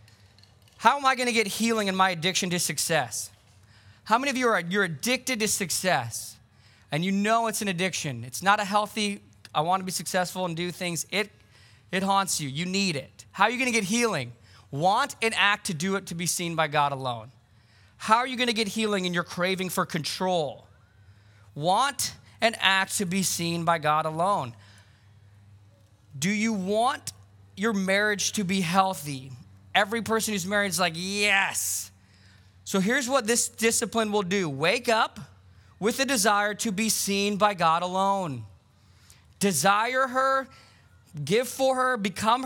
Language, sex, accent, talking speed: English, male, American, 170 wpm